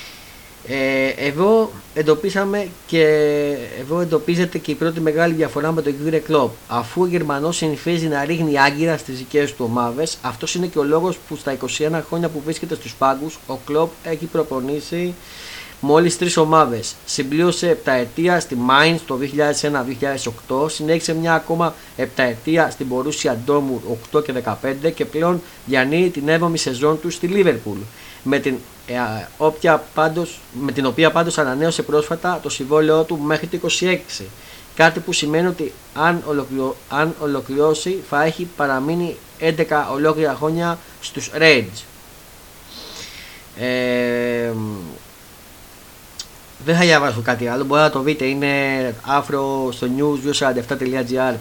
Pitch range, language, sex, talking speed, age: 130-160 Hz, Greek, male, 135 wpm, 30-49